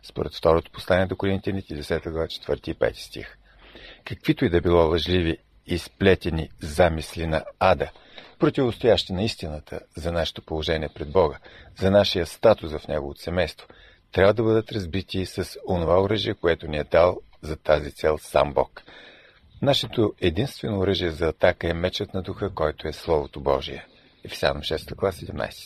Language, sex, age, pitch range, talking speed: Bulgarian, male, 50-69, 80-105 Hz, 160 wpm